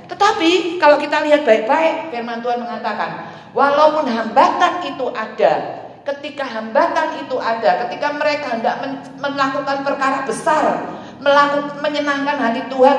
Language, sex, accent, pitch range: Indonesian, female, native, 175-275 Hz